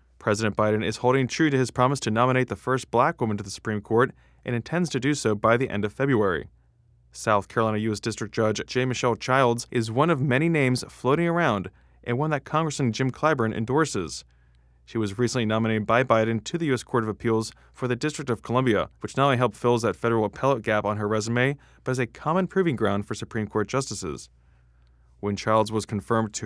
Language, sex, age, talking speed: English, male, 20-39, 215 wpm